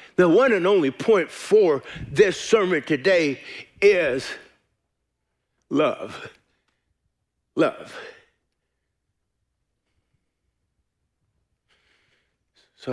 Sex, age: male, 50-69